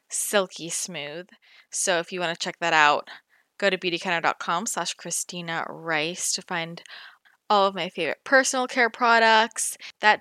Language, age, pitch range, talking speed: English, 20-39, 165-200 Hz, 155 wpm